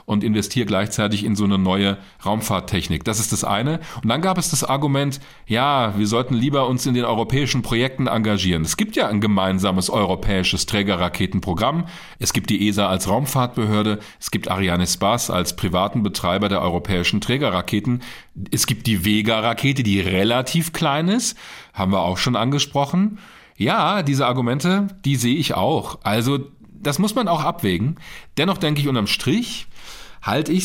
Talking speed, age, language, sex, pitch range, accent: 165 wpm, 40-59, German, male, 105-140 Hz, German